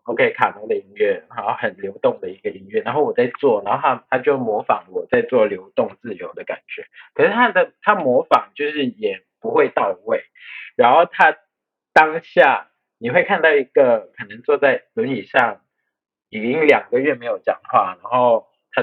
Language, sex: Chinese, male